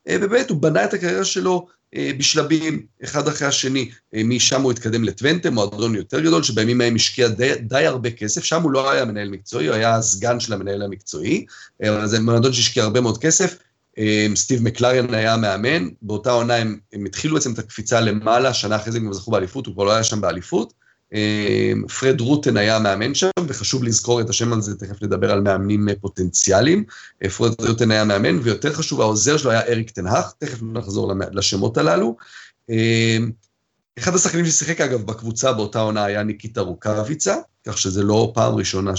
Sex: male